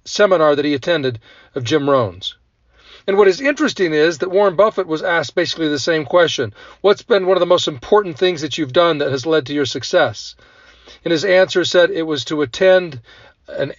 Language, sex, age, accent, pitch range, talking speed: English, male, 40-59, American, 145-200 Hz, 205 wpm